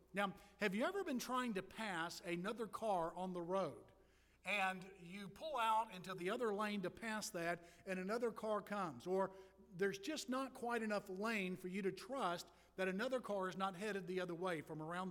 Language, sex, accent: English, male, American